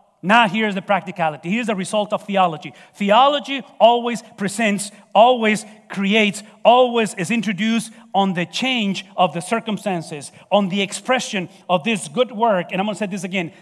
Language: English